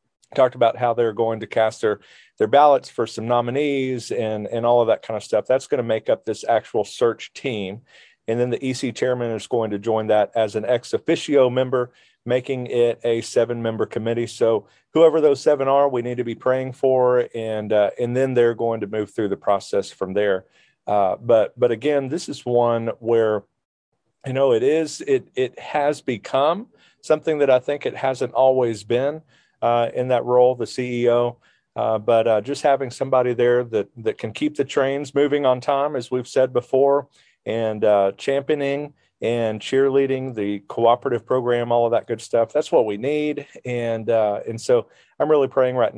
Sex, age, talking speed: male, 40-59, 195 wpm